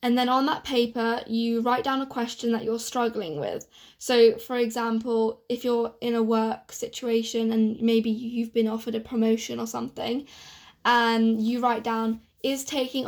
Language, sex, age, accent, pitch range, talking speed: English, female, 20-39, British, 225-245 Hz, 175 wpm